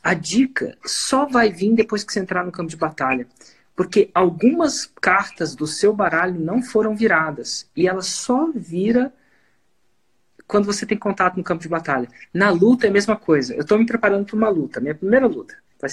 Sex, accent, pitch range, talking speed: male, Brazilian, 180-255 Hz, 190 wpm